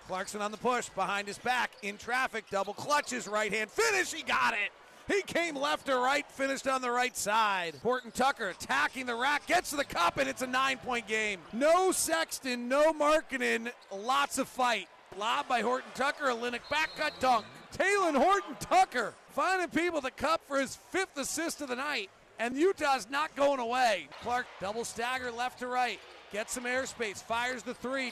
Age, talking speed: 40-59, 190 wpm